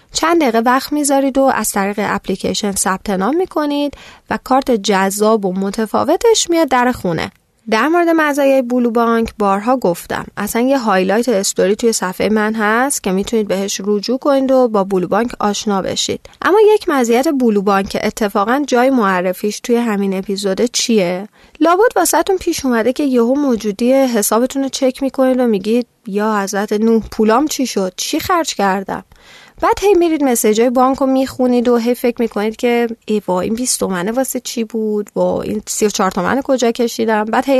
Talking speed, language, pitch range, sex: 165 wpm, Persian, 205-265 Hz, female